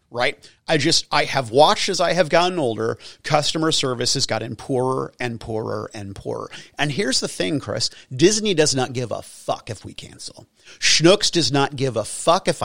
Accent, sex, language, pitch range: American, male, English, 165-230 Hz